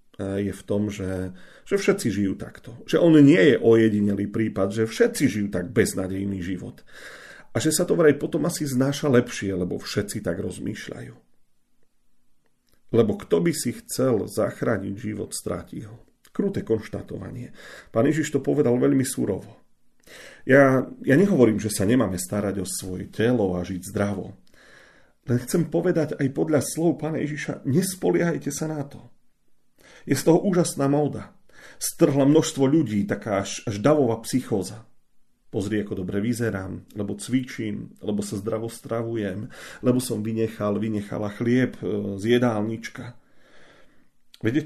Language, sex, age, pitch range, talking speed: Slovak, male, 40-59, 105-150 Hz, 140 wpm